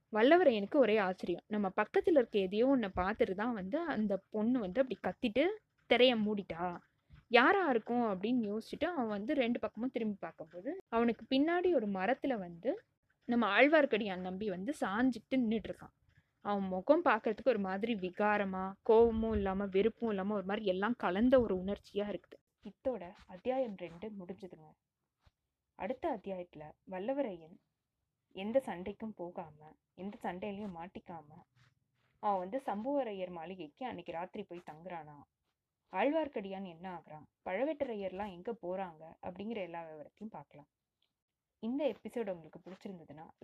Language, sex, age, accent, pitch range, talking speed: Tamil, female, 20-39, native, 180-245 Hz, 125 wpm